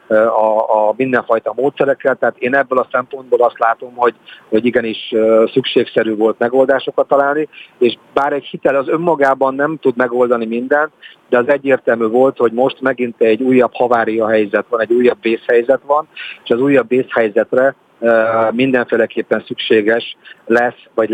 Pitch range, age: 115-135 Hz, 50-69